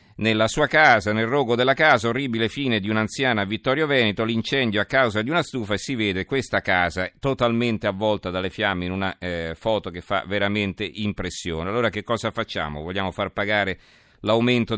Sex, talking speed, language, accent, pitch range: male, 185 wpm, Italian, native, 95-120 Hz